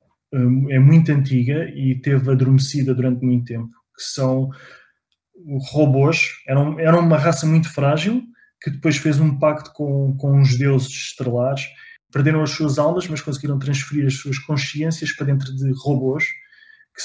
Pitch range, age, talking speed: 130-150 Hz, 20-39, 150 wpm